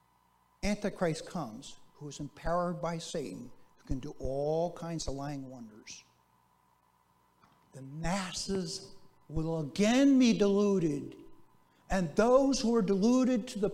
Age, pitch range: 60-79, 165-215 Hz